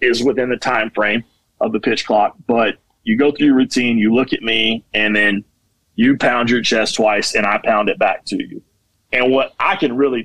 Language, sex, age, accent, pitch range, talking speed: English, male, 30-49, American, 105-125 Hz, 225 wpm